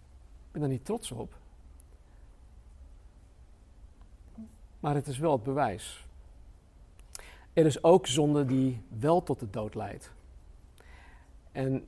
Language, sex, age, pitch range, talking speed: Dutch, male, 50-69, 90-150 Hz, 115 wpm